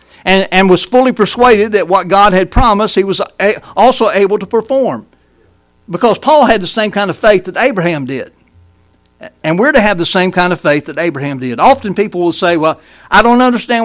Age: 60-79